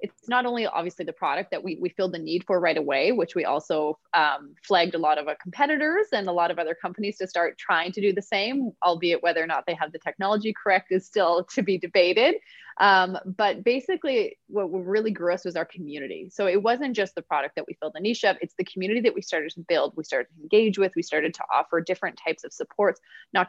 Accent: American